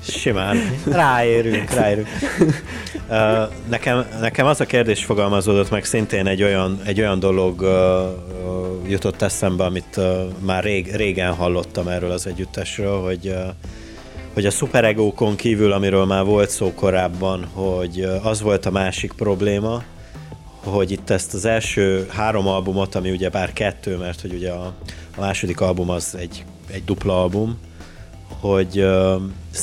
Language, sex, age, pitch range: Hungarian, male, 30-49, 95-110 Hz